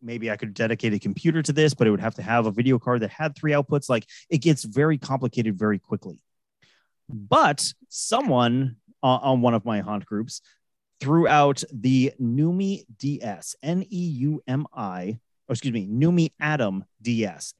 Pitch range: 110-145 Hz